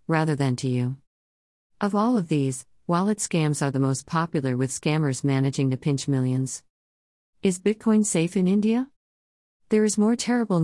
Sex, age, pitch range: female, 50-69, 130-160 Hz